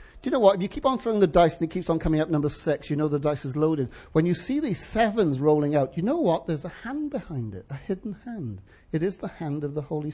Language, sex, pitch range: English, male, 135-185 Hz